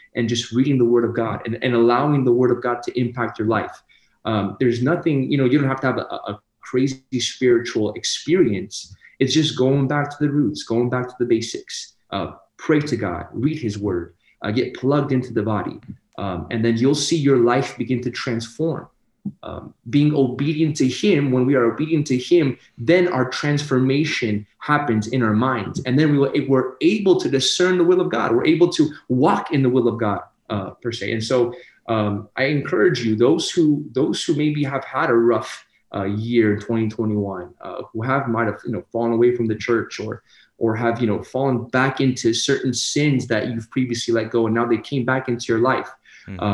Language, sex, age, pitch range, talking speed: English, male, 30-49, 115-140 Hz, 210 wpm